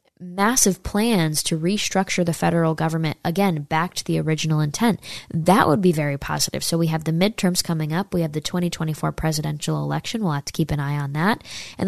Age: 10-29